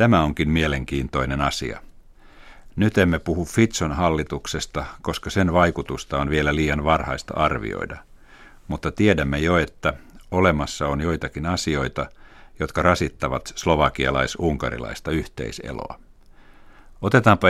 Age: 60-79